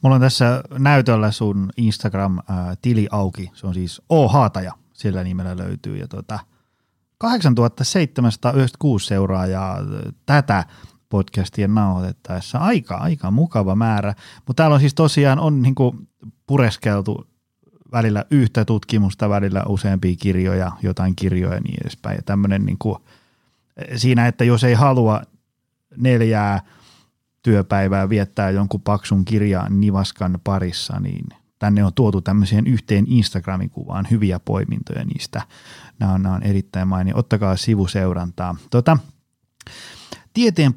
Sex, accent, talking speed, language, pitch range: male, native, 120 wpm, Finnish, 100-135 Hz